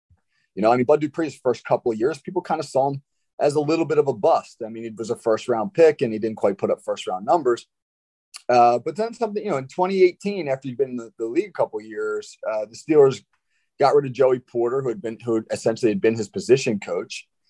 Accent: American